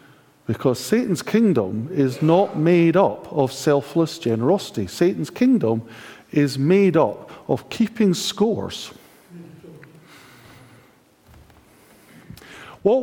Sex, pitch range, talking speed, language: male, 130-200 Hz, 85 wpm, English